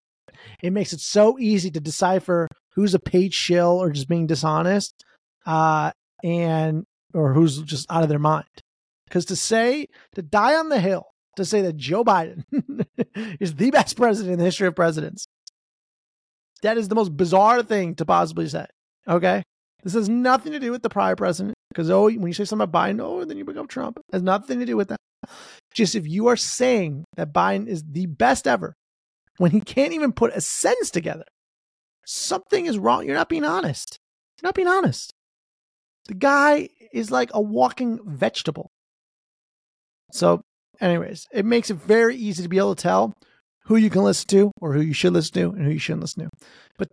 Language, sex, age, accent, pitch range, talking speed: English, male, 30-49, American, 170-225 Hz, 195 wpm